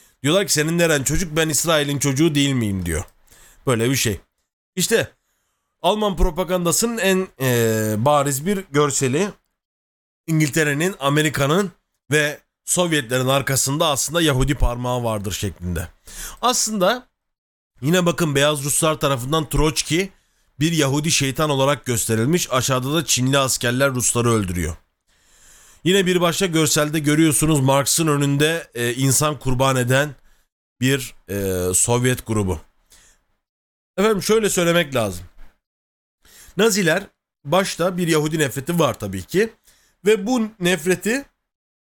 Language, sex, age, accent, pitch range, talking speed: Turkish, male, 40-59, native, 125-185 Hz, 110 wpm